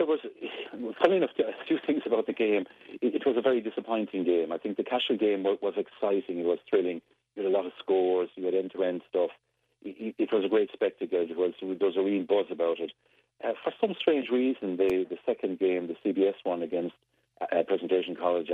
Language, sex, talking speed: English, male, 225 wpm